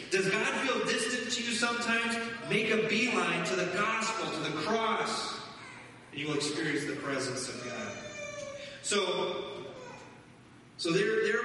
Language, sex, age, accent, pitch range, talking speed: English, male, 30-49, American, 130-195 Hz, 145 wpm